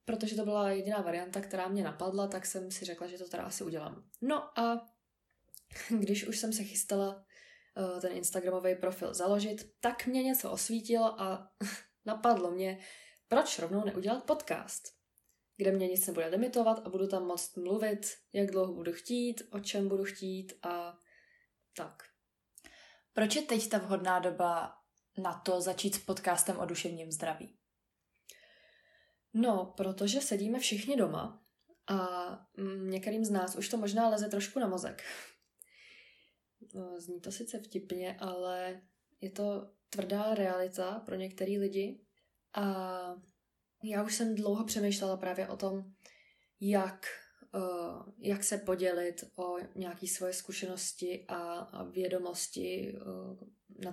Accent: native